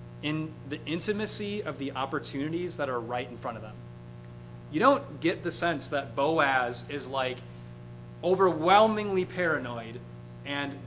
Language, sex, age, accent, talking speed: English, male, 30-49, American, 140 wpm